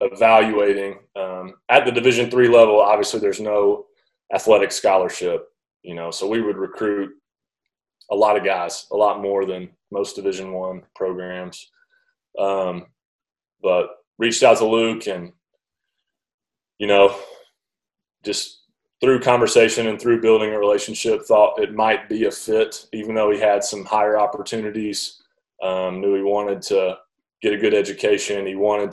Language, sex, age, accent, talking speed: English, male, 20-39, American, 145 wpm